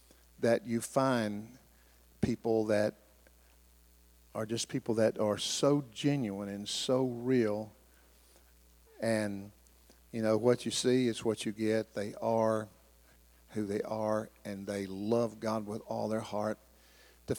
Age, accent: 50-69, American